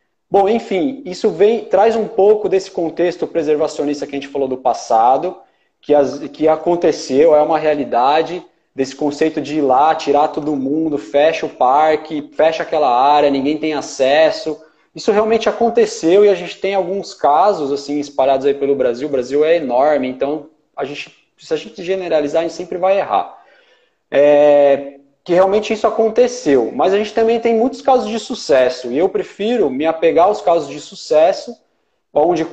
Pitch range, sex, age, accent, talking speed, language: 145-210 Hz, male, 20-39, Brazilian, 175 wpm, Portuguese